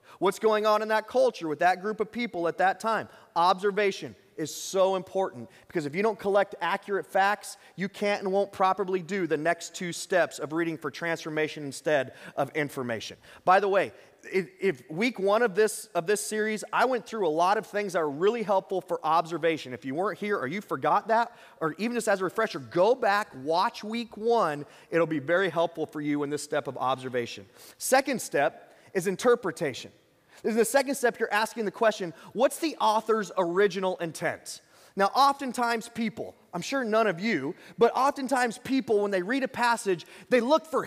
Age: 30-49